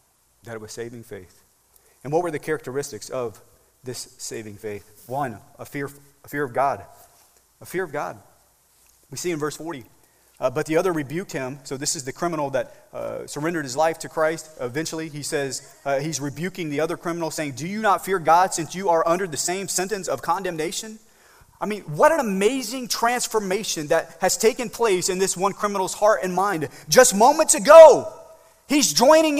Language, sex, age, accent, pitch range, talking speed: English, male, 30-49, American, 145-235 Hz, 190 wpm